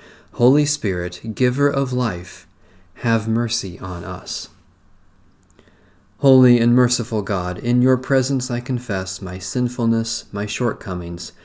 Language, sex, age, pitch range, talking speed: English, male, 40-59, 95-125 Hz, 115 wpm